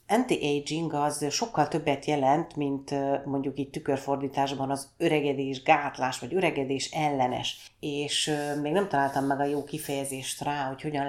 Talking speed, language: 140 wpm, Hungarian